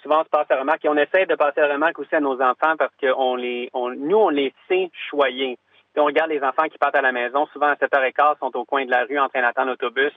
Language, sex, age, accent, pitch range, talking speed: French, male, 30-49, Canadian, 130-160 Hz, 295 wpm